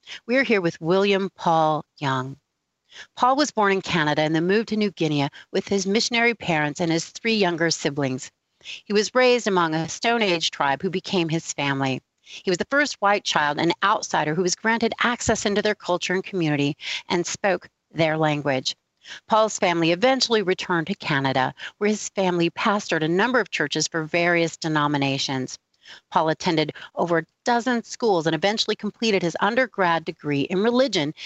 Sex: female